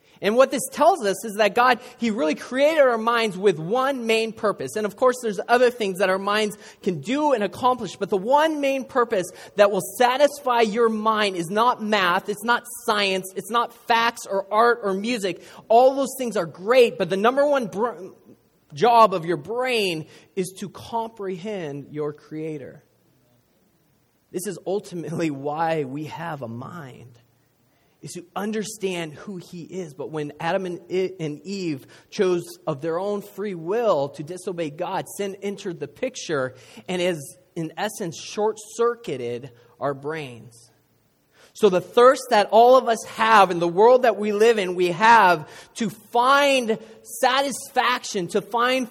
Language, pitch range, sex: English, 175-235 Hz, male